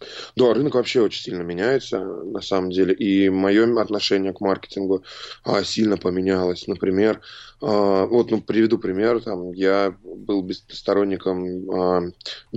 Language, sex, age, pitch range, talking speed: Russian, male, 20-39, 95-105 Hz, 135 wpm